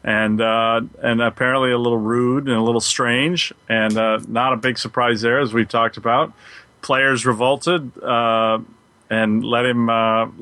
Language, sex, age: English, male, 40-59